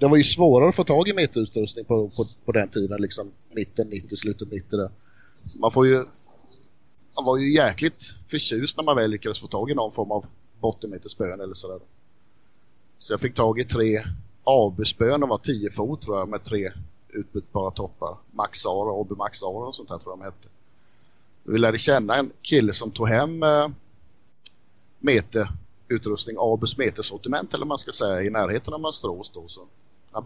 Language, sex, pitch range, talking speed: Swedish, male, 100-115 Hz, 180 wpm